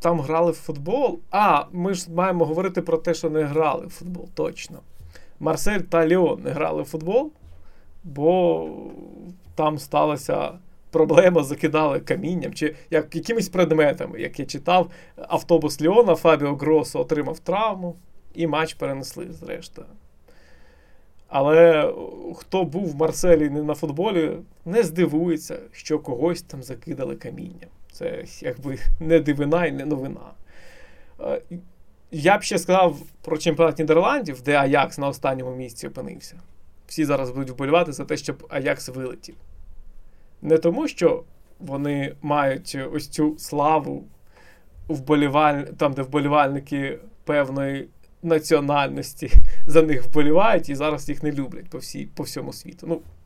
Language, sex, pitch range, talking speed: Ukrainian, male, 140-170 Hz, 135 wpm